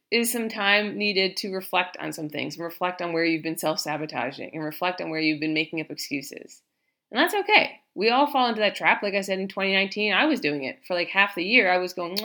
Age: 20-39